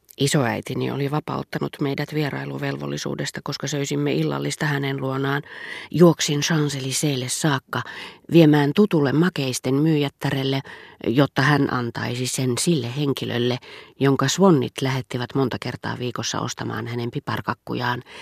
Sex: female